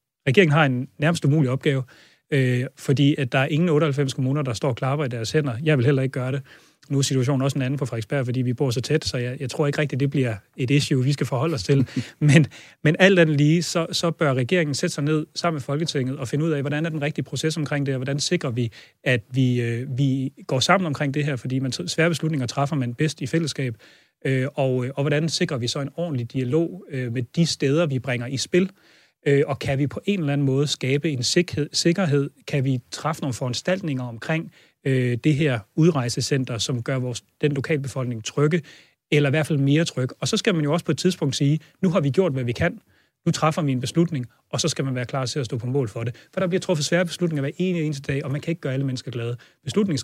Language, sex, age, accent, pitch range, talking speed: Danish, male, 30-49, native, 130-155 Hz, 250 wpm